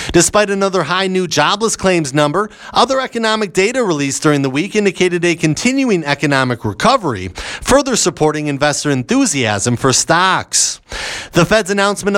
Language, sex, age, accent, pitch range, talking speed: English, male, 30-49, American, 150-205 Hz, 140 wpm